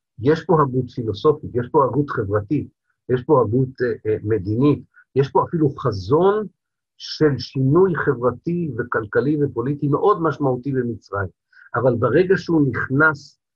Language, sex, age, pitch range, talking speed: Hebrew, male, 50-69, 115-150 Hz, 125 wpm